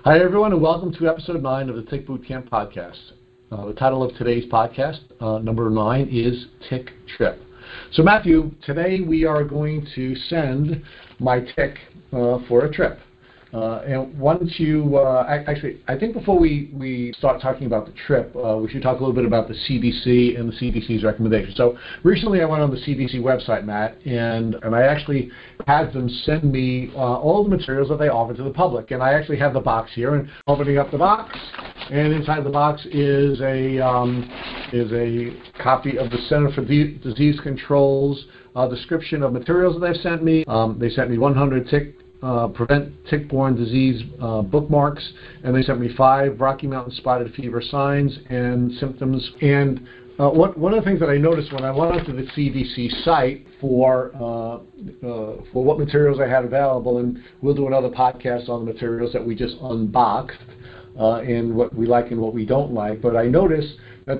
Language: English